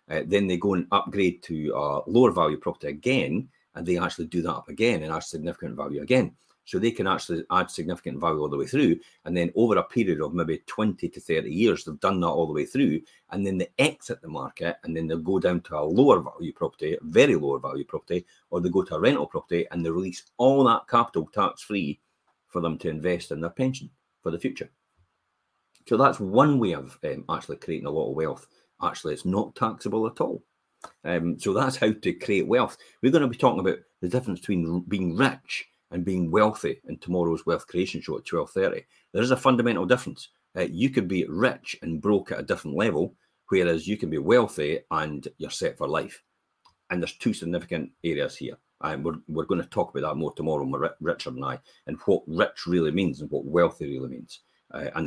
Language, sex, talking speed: English, male, 220 wpm